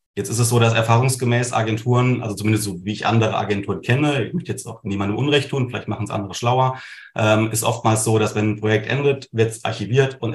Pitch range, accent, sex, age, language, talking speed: 105-115 Hz, German, male, 30-49, German, 230 wpm